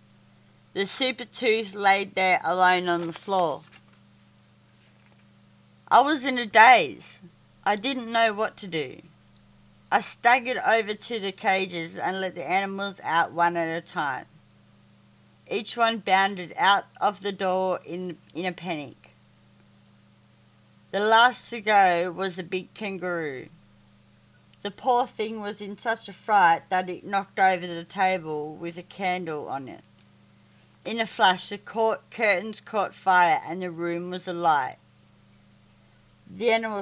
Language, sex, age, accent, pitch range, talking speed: English, female, 40-59, Australian, 170-205 Hz, 140 wpm